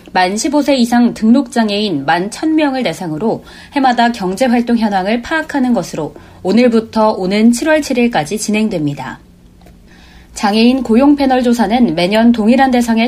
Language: Korean